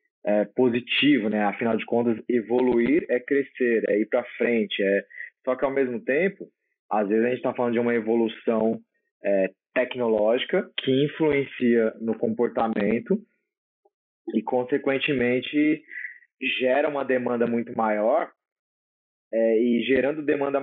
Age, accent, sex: 20-39, Brazilian, male